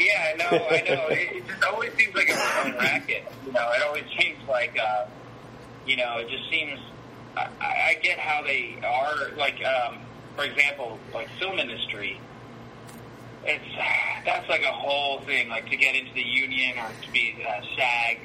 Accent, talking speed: American, 185 wpm